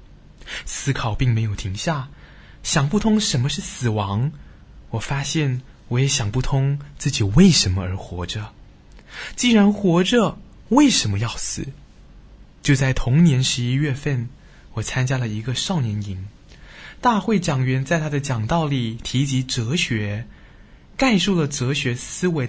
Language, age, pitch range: Chinese, 20-39, 120-180 Hz